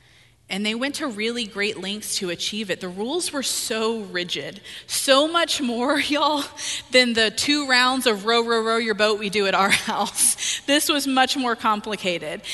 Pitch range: 185-235 Hz